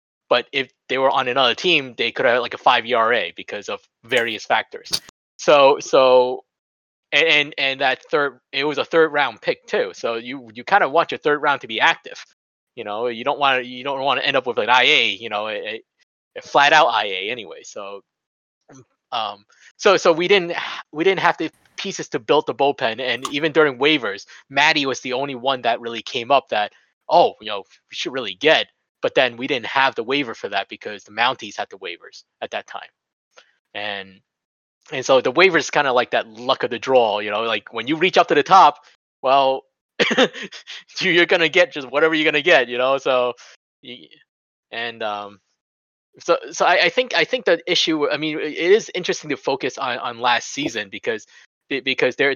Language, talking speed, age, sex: English, 210 wpm, 20-39, male